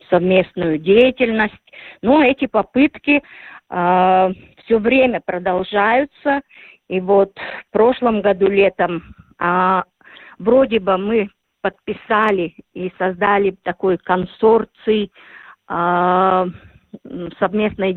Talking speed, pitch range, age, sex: 85 wpm, 185-235 Hz, 50-69, female